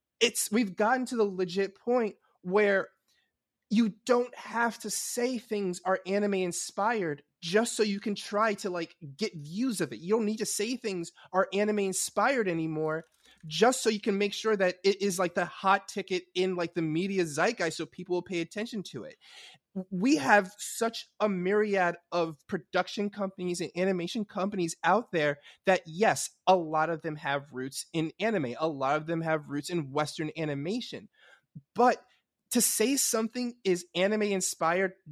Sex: male